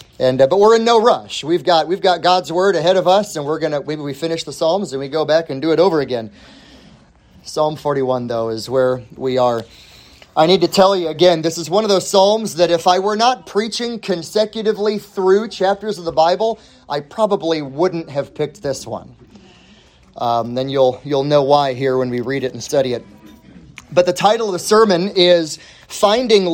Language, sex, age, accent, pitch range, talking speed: English, male, 30-49, American, 130-180 Hz, 210 wpm